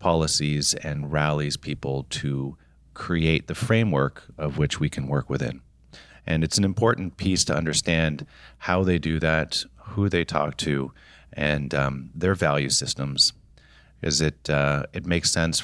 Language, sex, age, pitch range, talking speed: English, male, 40-59, 70-85 Hz, 155 wpm